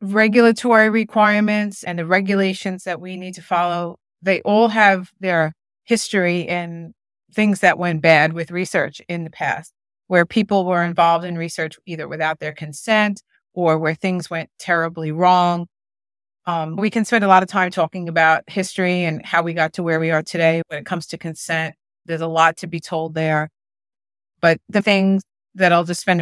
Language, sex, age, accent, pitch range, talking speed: English, female, 30-49, American, 160-190 Hz, 185 wpm